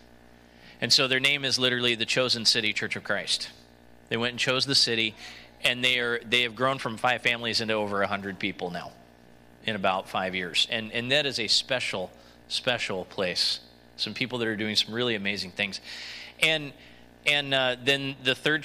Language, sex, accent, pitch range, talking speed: English, male, American, 105-135 Hz, 190 wpm